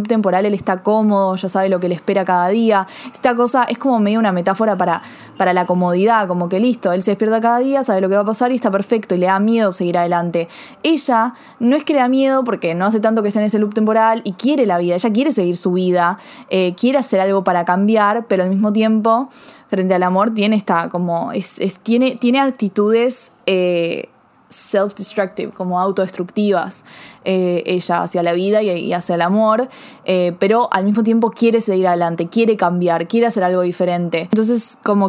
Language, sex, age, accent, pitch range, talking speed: Spanish, female, 20-39, Argentinian, 185-225 Hz, 205 wpm